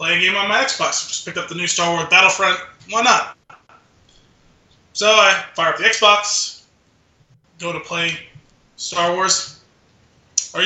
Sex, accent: male, American